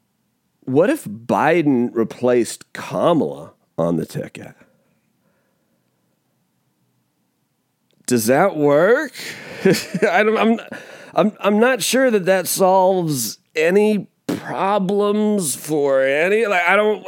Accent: American